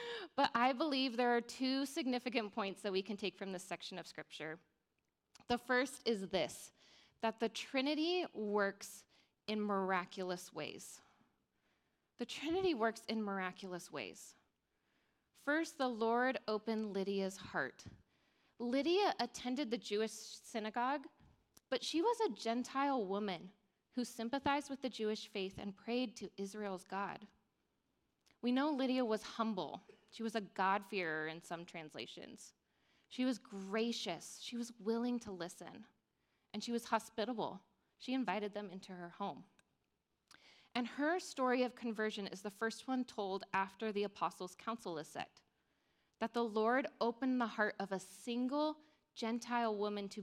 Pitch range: 195-245 Hz